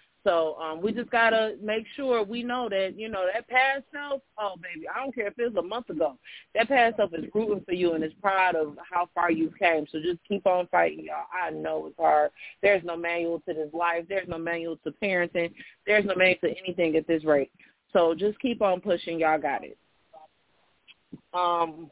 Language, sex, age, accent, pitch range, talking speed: English, female, 30-49, American, 160-195 Hz, 220 wpm